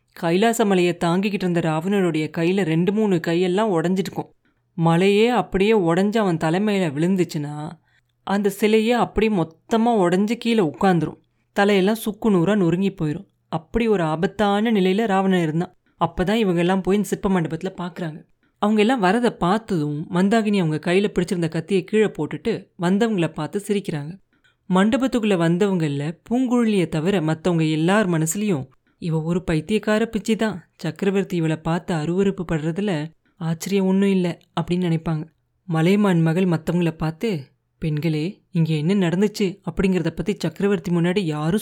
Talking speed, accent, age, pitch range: 130 wpm, native, 30-49, 165-200 Hz